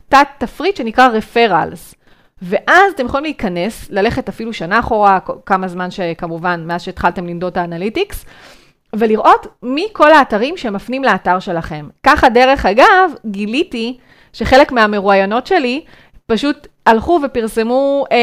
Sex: female